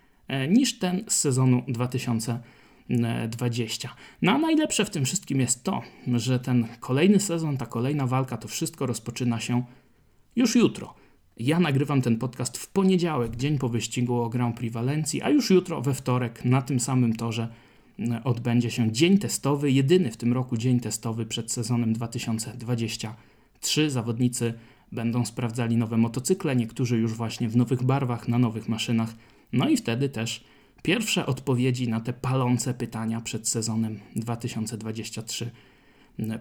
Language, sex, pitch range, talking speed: Polish, male, 115-140 Hz, 145 wpm